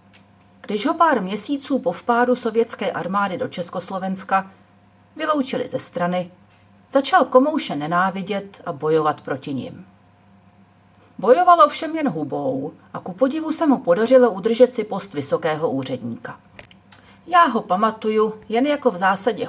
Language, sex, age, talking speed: Czech, female, 40-59, 130 wpm